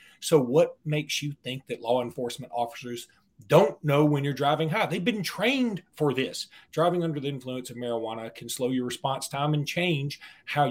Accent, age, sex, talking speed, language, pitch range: American, 40-59, male, 190 wpm, English, 120-155 Hz